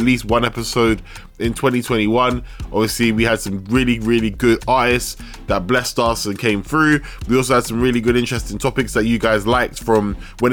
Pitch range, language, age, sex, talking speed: 110-135 Hz, English, 10-29, male, 190 wpm